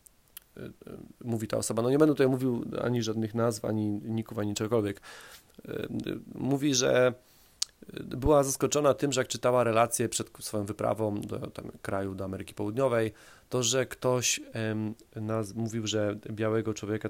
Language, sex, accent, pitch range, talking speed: Polish, male, native, 105-125 Hz, 145 wpm